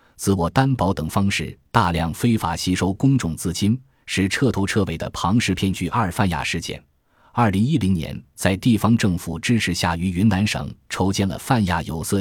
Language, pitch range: Chinese, 85-115 Hz